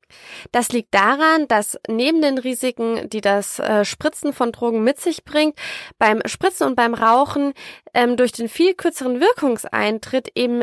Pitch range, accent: 210-265 Hz, German